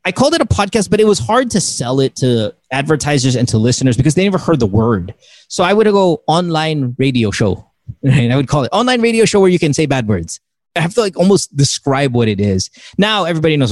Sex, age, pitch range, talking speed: male, 30-49, 120-165 Hz, 240 wpm